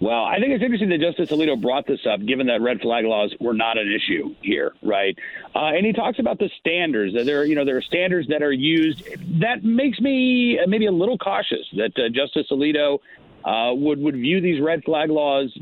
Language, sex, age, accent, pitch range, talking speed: English, male, 50-69, American, 125-185 Hz, 225 wpm